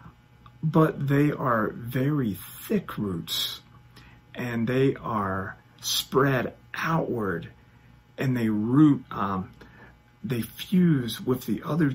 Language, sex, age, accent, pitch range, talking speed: English, male, 40-59, American, 110-160 Hz, 100 wpm